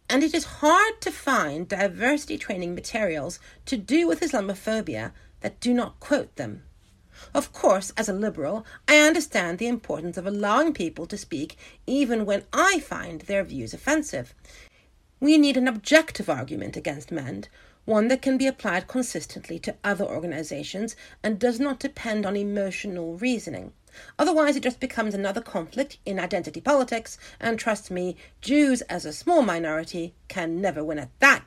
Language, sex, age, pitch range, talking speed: English, female, 40-59, 180-270 Hz, 160 wpm